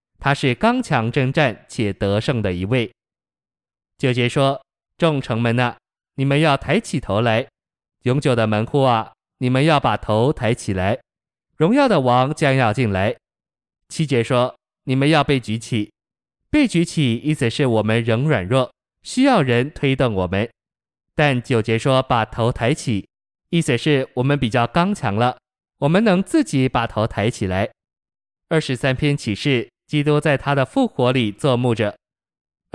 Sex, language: male, Chinese